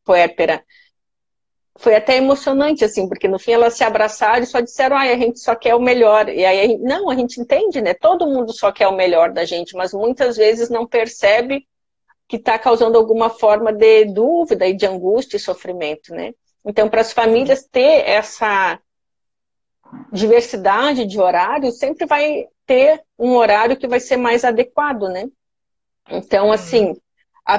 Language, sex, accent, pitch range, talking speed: Portuguese, female, Brazilian, 205-260 Hz, 170 wpm